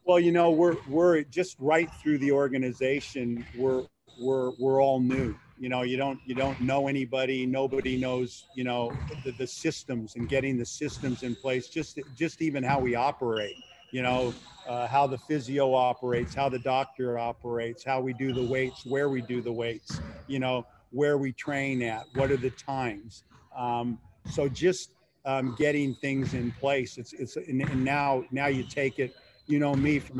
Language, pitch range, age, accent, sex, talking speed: English, 125-140 Hz, 50-69, American, male, 185 wpm